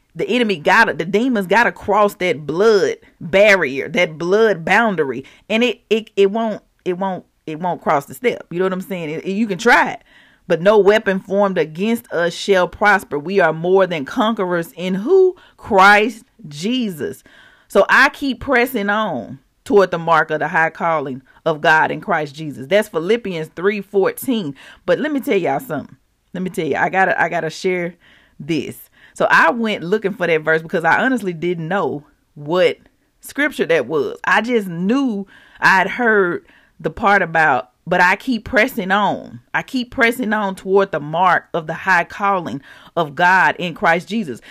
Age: 40-59